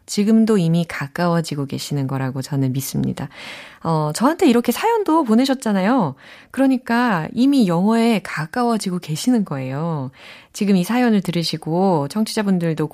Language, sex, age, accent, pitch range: Korean, female, 20-39, native, 155-245 Hz